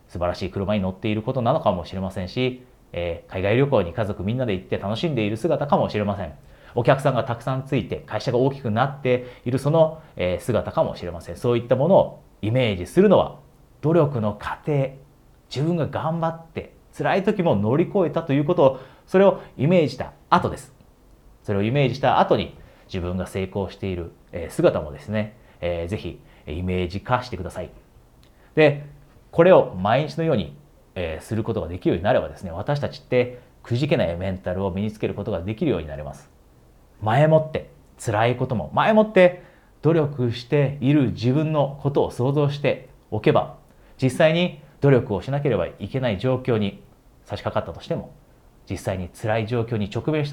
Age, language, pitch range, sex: 30-49, Japanese, 95-145 Hz, male